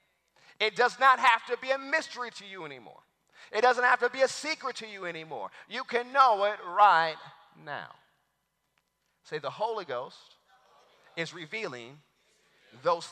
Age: 30-49